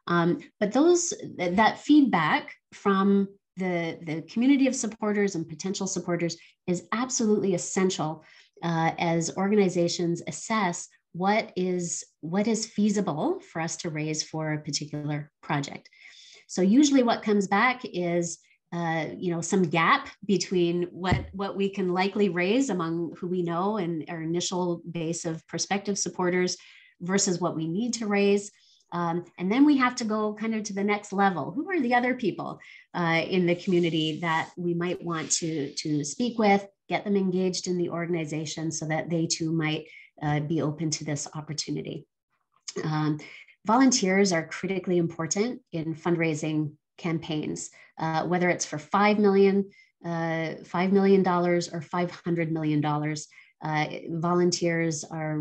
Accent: American